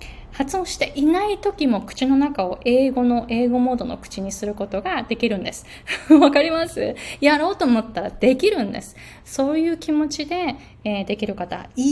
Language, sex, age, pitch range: Japanese, female, 20-39, 205-265 Hz